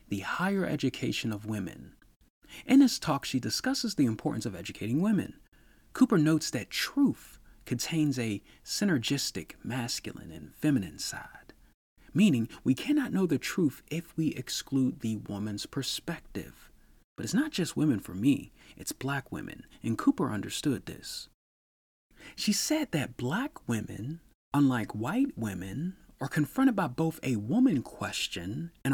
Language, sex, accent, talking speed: English, male, American, 140 wpm